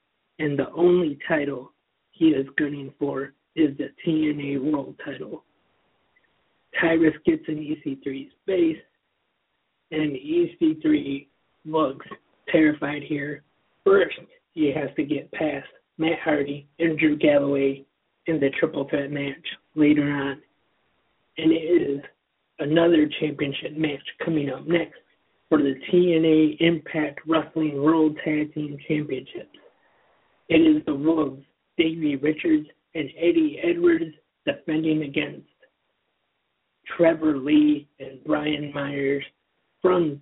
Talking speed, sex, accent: 115 wpm, male, American